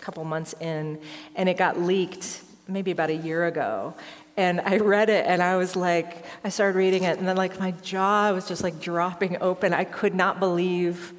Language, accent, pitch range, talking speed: English, American, 175-230 Hz, 205 wpm